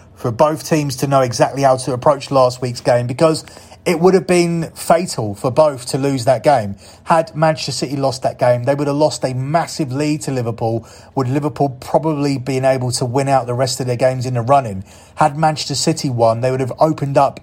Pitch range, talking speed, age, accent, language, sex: 125-150 Hz, 220 wpm, 30-49, British, English, male